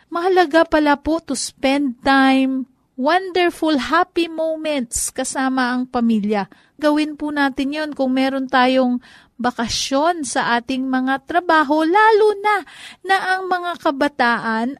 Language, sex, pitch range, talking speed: Filipino, female, 240-310 Hz, 120 wpm